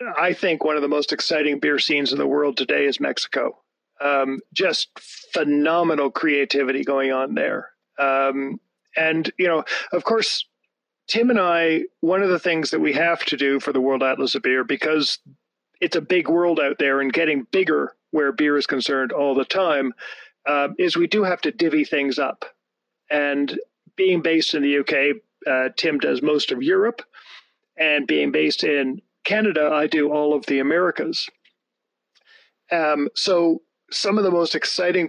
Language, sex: English, male